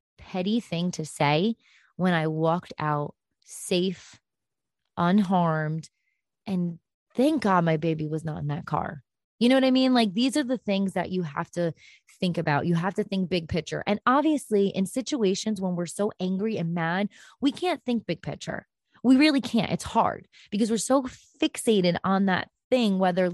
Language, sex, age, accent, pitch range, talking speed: English, female, 20-39, American, 175-245 Hz, 180 wpm